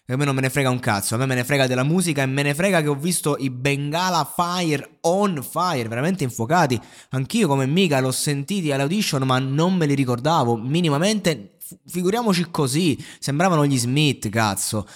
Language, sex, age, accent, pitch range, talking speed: Italian, male, 20-39, native, 120-150 Hz, 190 wpm